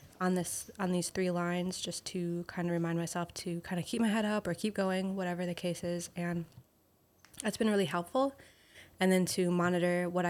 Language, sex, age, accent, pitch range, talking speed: English, female, 20-39, American, 175-205 Hz, 210 wpm